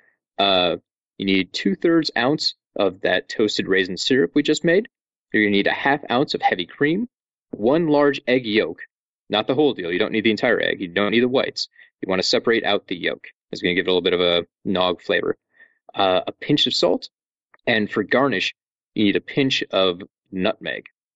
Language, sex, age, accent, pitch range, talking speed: English, male, 30-49, American, 100-145 Hz, 215 wpm